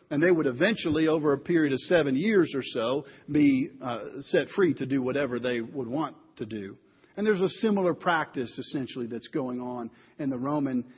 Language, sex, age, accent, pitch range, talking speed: English, male, 50-69, American, 150-215 Hz, 195 wpm